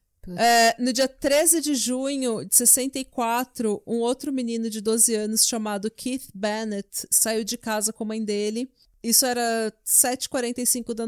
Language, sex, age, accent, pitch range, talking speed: Portuguese, female, 30-49, Brazilian, 210-240 Hz, 145 wpm